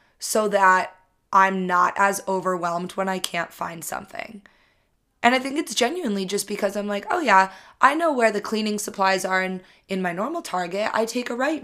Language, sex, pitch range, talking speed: English, female, 180-220 Hz, 195 wpm